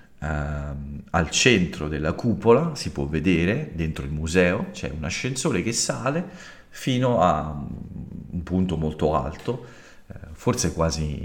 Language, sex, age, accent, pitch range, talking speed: Italian, male, 50-69, native, 75-95 Hz, 125 wpm